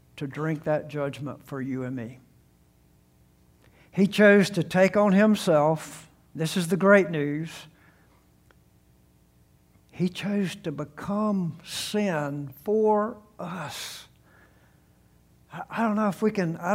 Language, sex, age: English, male, 60-79